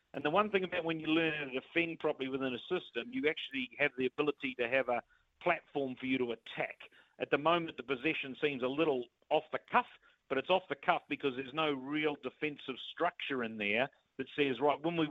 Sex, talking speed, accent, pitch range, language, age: male, 225 wpm, Australian, 130-155 Hz, English, 50-69